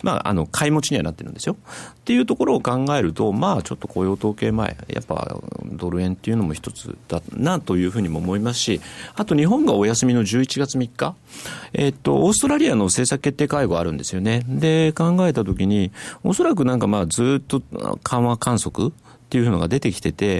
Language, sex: Japanese, male